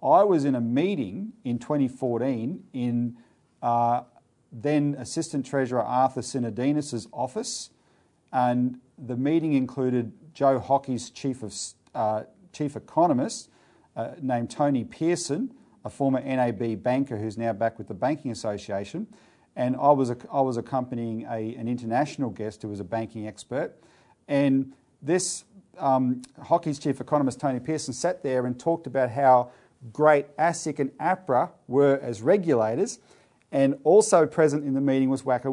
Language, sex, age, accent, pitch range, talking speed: English, male, 40-59, Australian, 120-150 Hz, 145 wpm